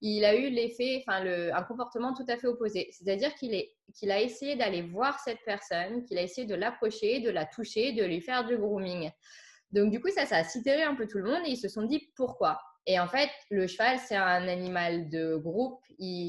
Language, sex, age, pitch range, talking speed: French, female, 20-39, 185-250 Hz, 235 wpm